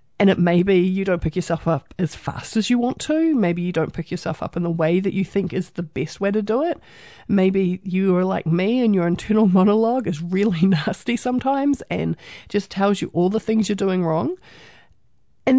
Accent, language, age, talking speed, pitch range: Australian, English, 40-59, 225 wpm, 170-220 Hz